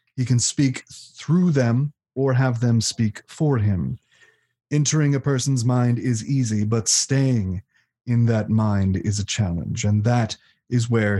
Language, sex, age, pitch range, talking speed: English, male, 30-49, 110-130 Hz, 155 wpm